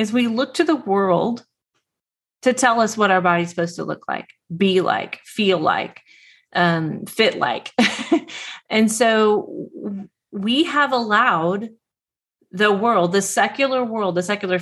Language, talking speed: English, 145 wpm